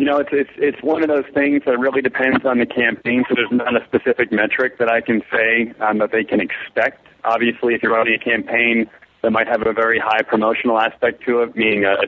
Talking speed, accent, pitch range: 240 wpm, American, 105-125 Hz